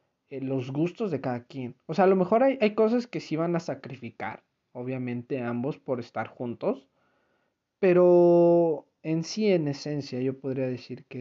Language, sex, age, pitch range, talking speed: Spanish, male, 40-59, 125-160 Hz, 170 wpm